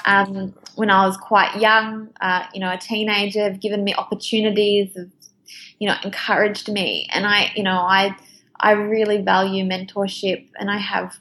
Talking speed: 170 wpm